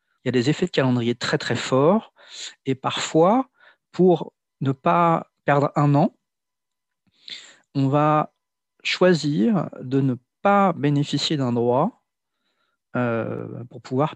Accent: French